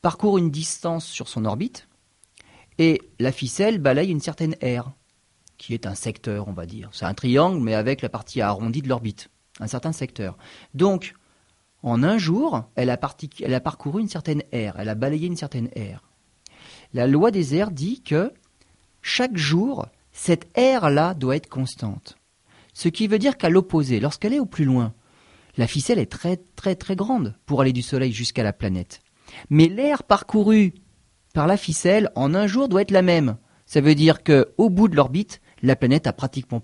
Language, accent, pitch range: French, French, 115-170 Hz